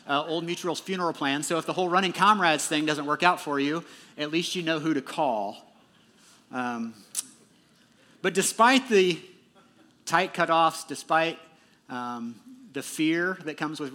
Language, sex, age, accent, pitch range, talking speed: English, male, 40-59, American, 130-170 Hz, 160 wpm